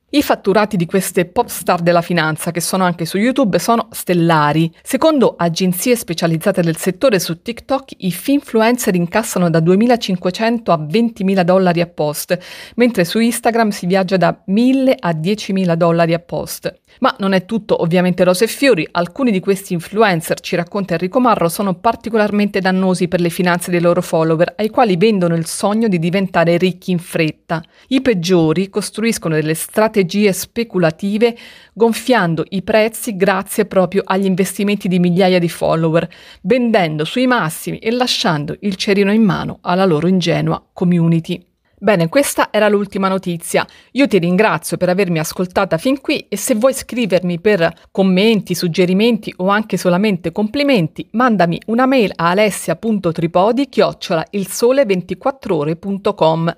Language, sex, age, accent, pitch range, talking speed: Italian, female, 30-49, native, 175-225 Hz, 145 wpm